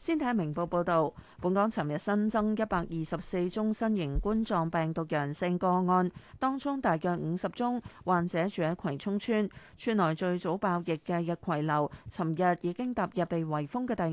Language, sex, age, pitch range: Chinese, female, 30-49, 165-215 Hz